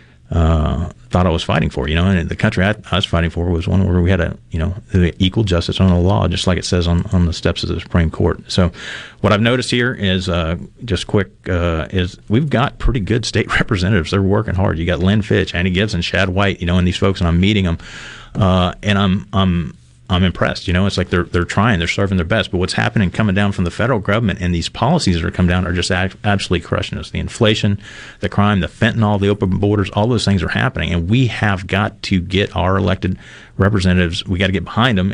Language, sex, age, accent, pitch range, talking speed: English, male, 40-59, American, 90-100 Hz, 250 wpm